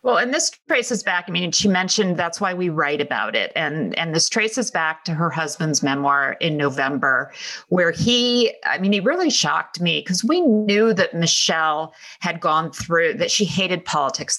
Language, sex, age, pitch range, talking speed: English, female, 40-59, 150-195 Hz, 190 wpm